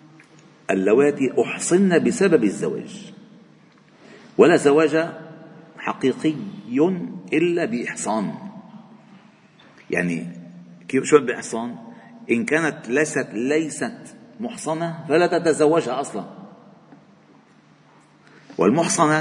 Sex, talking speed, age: male, 65 wpm, 50-69